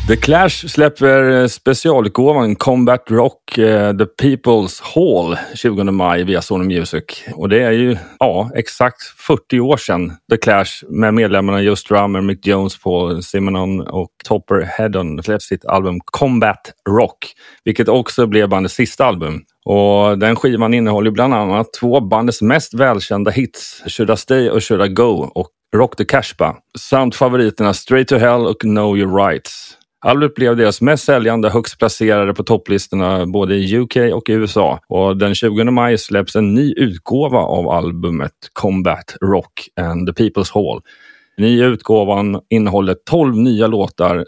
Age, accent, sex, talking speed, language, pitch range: 30-49, native, male, 155 wpm, Swedish, 95-120 Hz